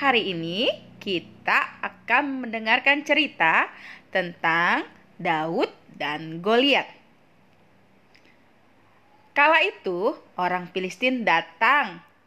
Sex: female